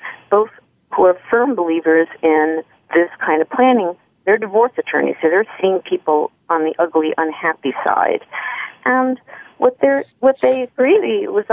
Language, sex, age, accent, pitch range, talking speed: English, female, 40-59, American, 170-255 Hz, 150 wpm